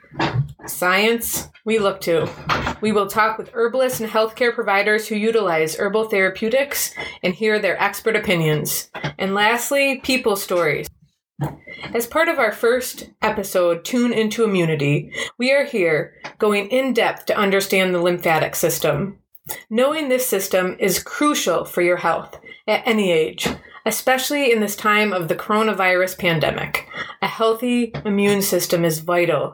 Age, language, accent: 30-49, English, American